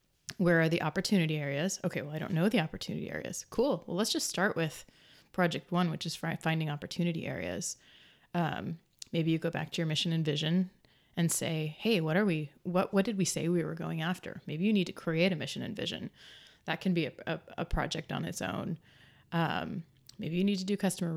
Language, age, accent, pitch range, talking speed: English, 30-49, American, 155-185 Hz, 220 wpm